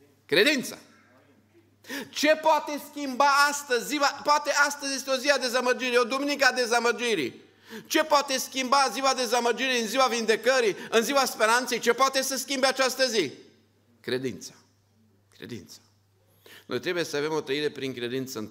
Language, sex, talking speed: Romanian, male, 145 wpm